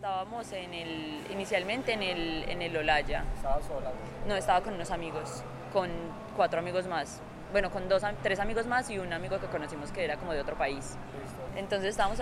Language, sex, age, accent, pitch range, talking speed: Spanish, female, 10-29, Colombian, 160-195 Hz, 185 wpm